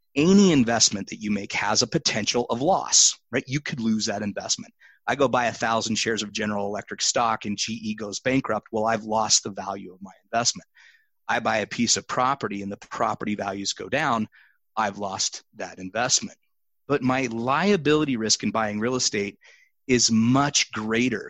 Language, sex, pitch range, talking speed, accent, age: English, male, 110-140 Hz, 185 wpm, American, 30-49